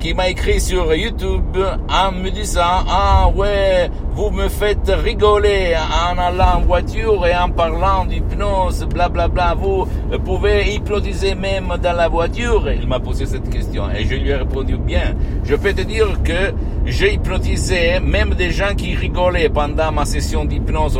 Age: 60-79